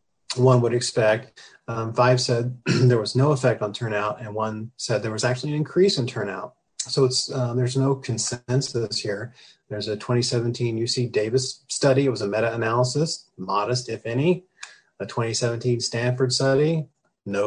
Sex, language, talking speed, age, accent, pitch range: male, English, 160 wpm, 30-49, American, 115-130 Hz